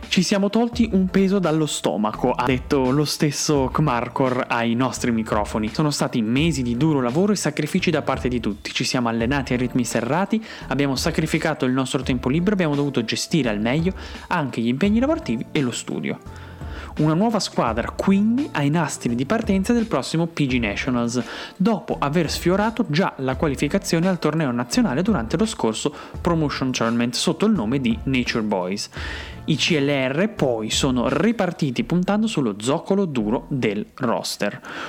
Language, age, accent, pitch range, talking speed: Italian, 20-39, native, 125-190 Hz, 160 wpm